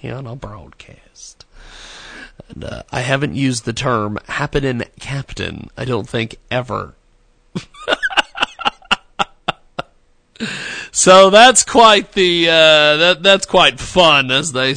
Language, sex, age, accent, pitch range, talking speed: English, male, 40-59, American, 125-170 Hz, 120 wpm